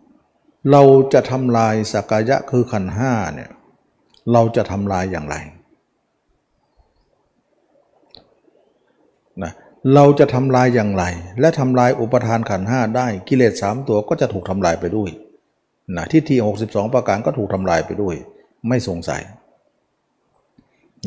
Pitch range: 100-130 Hz